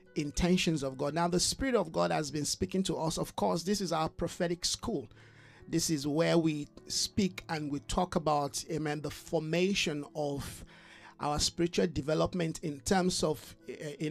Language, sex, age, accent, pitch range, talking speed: English, male, 50-69, Nigerian, 150-185 Hz, 170 wpm